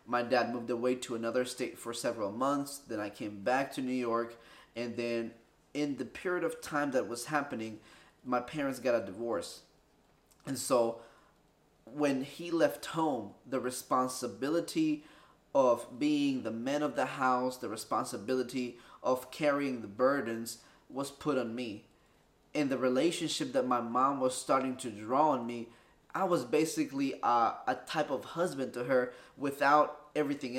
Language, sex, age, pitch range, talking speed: English, male, 20-39, 125-155 Hz, 160 wpm